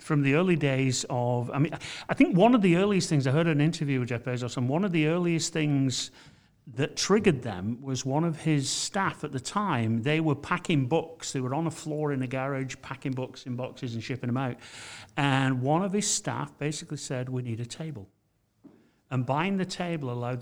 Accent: British